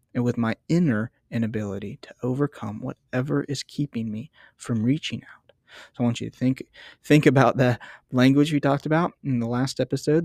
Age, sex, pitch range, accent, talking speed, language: 20-39, male, 115-135 Hz, American, 180 wpm, English